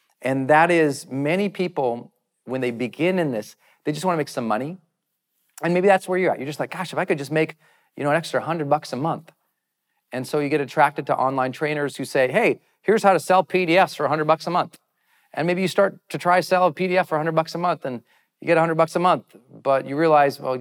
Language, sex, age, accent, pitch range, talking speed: English, male, 40-59, American, 125-170 Hz, 260 wpm